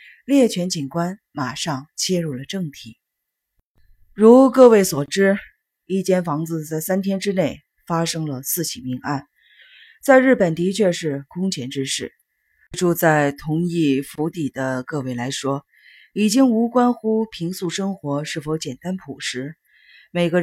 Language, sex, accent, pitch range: Chinese, female, native, 140-195 Hz